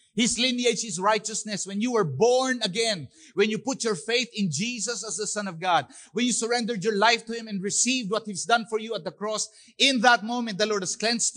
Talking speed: 240 wpm